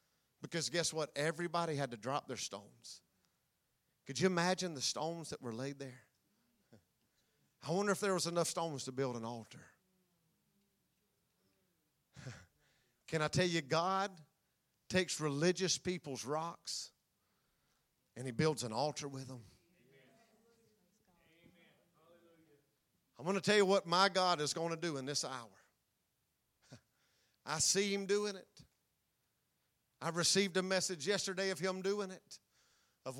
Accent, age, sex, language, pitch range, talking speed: American, 50-69, male, English, 145-195 Hz, 135 wpm